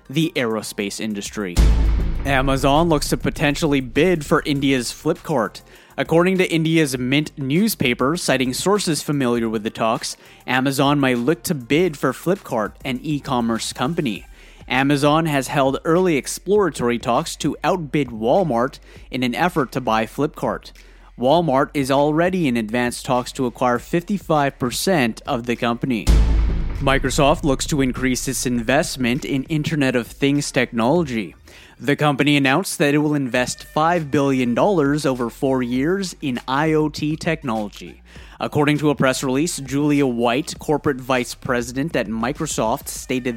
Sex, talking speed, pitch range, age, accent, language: male, 135 wpm, 120-150 Hz, 30-49, American, English